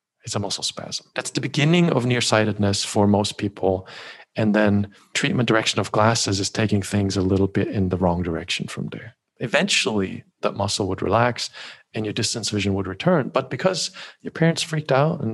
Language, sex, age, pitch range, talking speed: English, male, 40-59, 100-125 Hz, 190 wpm